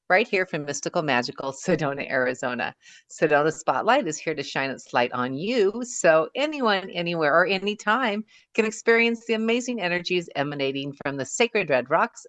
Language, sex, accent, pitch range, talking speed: English, female, American, 145-185 Hz, 160 wpm